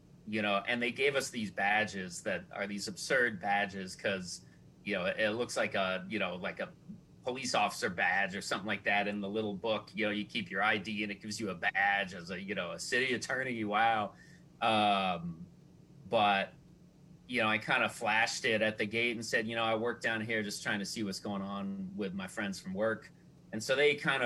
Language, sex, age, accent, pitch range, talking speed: English, male, 30-49, American, 100-120 Hz, 225 wpm